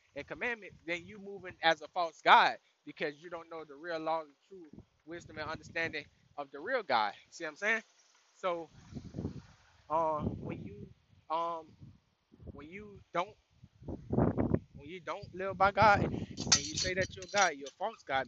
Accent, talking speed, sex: American, 175 wpm, male